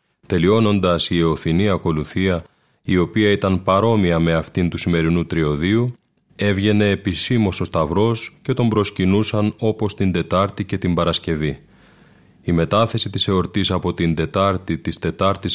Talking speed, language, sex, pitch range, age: 135 wpm, Greek, male, 85-110 Hz, 30-49